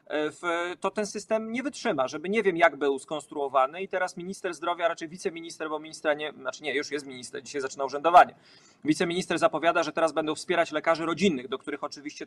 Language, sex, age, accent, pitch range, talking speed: Polish, male, 40-59, native, 155-195 Hz, 190 wpm